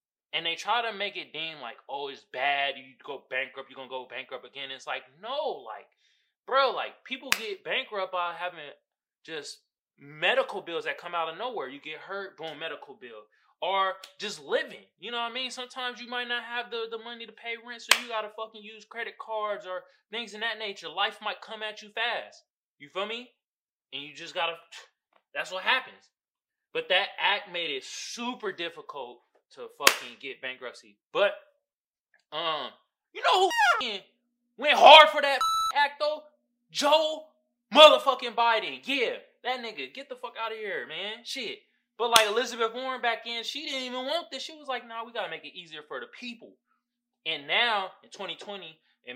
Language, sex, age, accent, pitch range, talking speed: English, male, 20-39, American, 185-270 Hz, 190 wpm